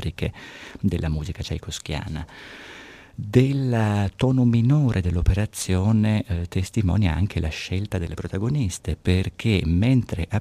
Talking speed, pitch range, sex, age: 100 wpm, 85-105 Hz, male, 50-69